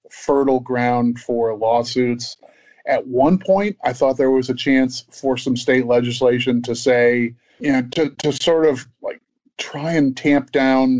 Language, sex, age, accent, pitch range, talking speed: English, male, 30-49, American, 120-140 Hz, 165 wpm